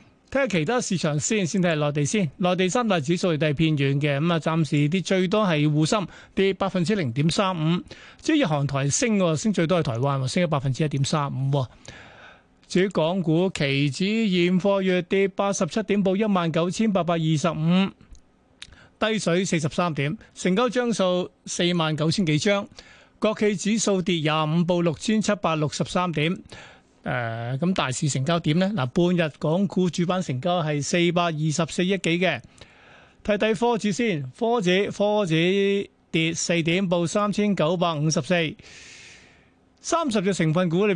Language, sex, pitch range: Chinese, male, 155-195 Hz